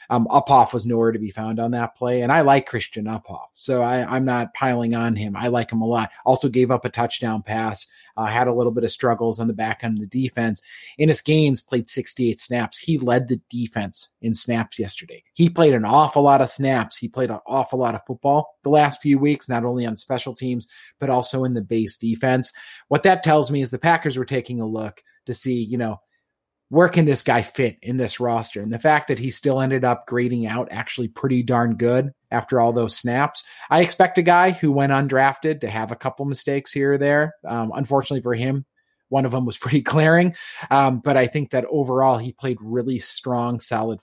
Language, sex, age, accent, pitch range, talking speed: English, male, 30-49, American, 115-140 Hz, 225 wpm